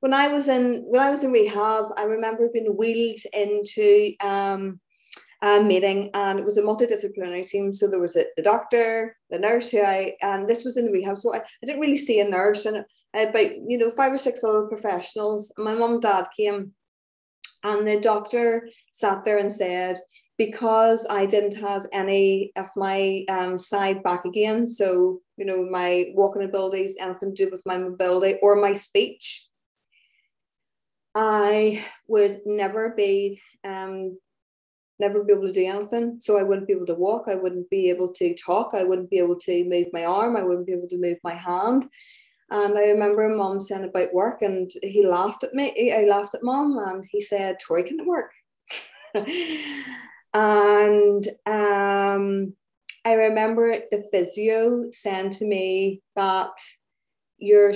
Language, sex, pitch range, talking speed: English, female, 190-220 Hz, 175 wpm